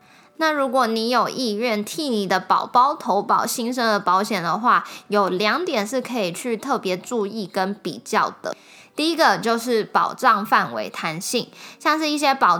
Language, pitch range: Chinese, 190-245 Hz